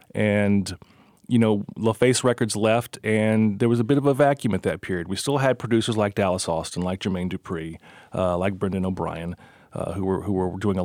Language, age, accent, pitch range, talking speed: English, 30-49, American, 95-110 Hz, 210 wpm